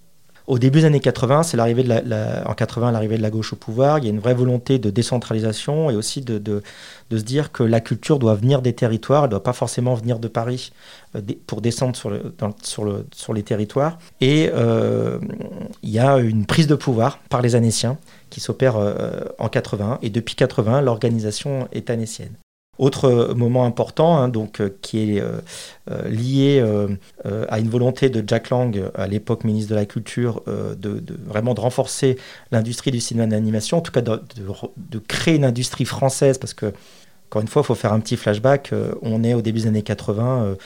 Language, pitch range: French, 110-130 Hz